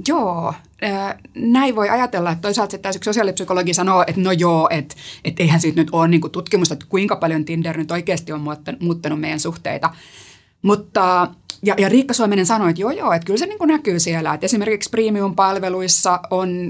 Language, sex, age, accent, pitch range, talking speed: Finnish, female, 30-49, native, 160-190 Hz, 170 wpm